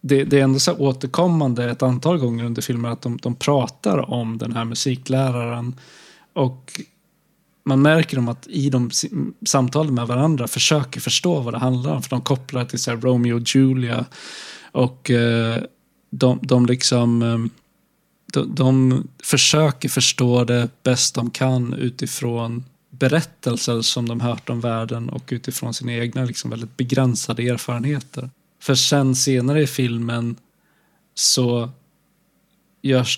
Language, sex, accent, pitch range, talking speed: Swedish, male, native, 120-140 Hz, 140 wpm